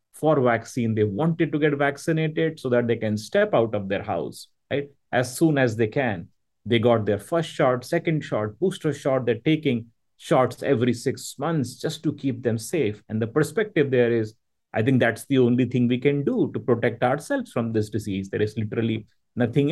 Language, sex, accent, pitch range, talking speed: English, male, Indian, 115-145 Hz, 200 wpm